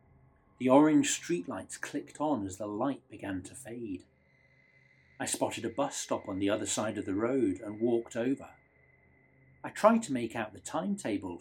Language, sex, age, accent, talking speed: English, male, 40-59, British, 175 wpm